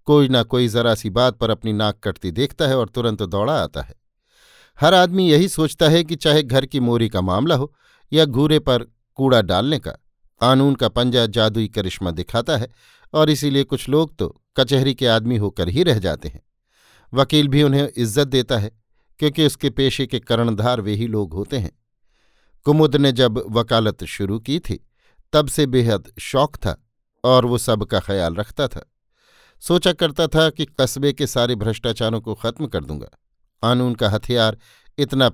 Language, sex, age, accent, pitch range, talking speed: Hindi, male, 50-69, native, 110-145 Hz, 180 wpm